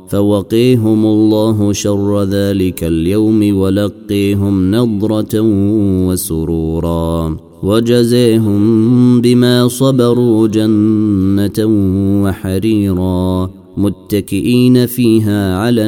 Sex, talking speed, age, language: male, 60 wpm, 30-49, Arabic